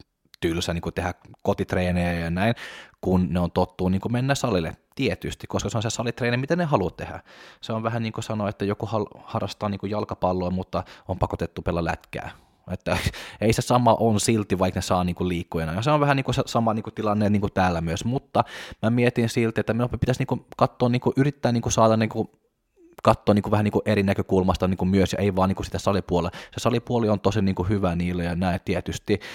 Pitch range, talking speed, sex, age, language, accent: 90-110 Hz, 165 wpm, male, 20-39, Finnish, native